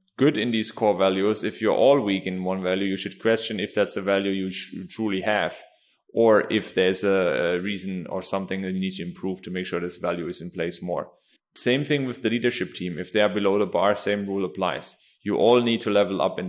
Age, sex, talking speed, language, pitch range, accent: 30-49, male, 235 wpm, English, 95-120 Hz, German